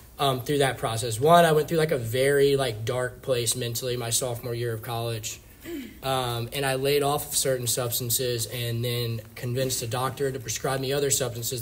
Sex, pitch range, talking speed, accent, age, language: male, 125-145 Hz, 190 wpm, American, 20-39, English